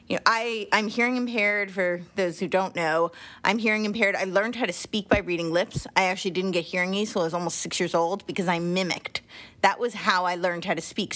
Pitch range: 180-220 Hz